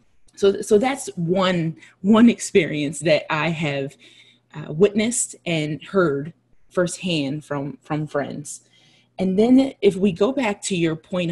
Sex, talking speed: female, 140 wpm